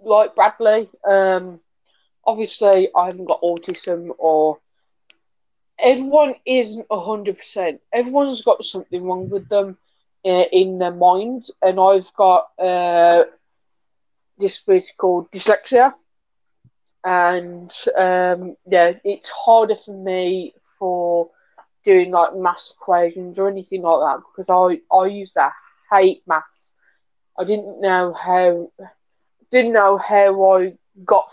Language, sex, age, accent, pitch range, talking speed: English, female, 20-39, British, 175-200 Hz, 120 wpm